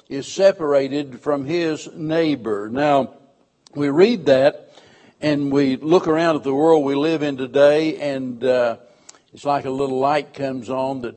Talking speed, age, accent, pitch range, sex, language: 160 wpm, 60-79, American, 130-155 Hz, male, English